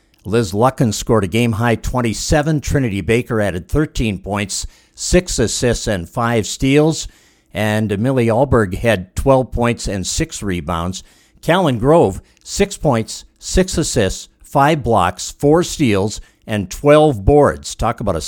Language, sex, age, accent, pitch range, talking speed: English, male, 60-79, American, 105-140 Hz, 135 wpm